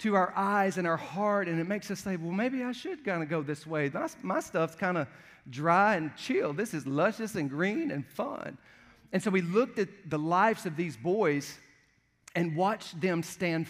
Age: 40-59